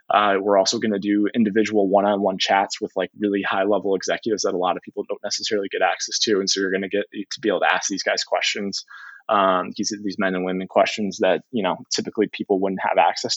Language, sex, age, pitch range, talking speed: English, male, 20-39, 105-130 Hz, 240 wpm